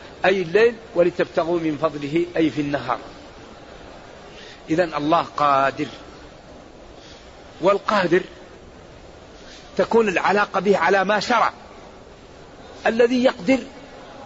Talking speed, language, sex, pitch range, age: 85 wpm, Arabic, male, 180-235 Hz, 50-69